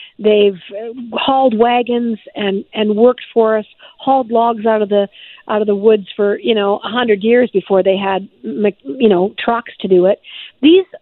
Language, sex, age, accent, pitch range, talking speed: English, female, 50-69, American, 205-245 Hz, 180 wpm